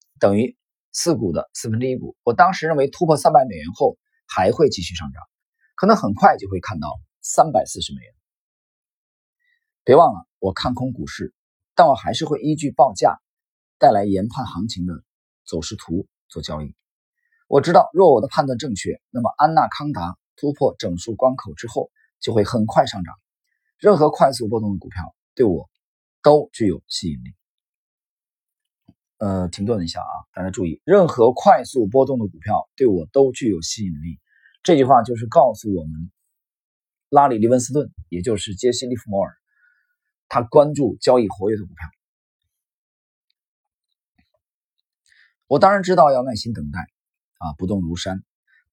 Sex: male